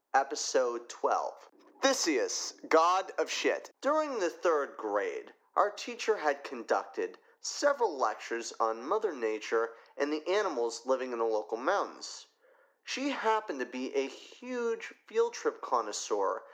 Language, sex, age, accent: English, male, 30-49, American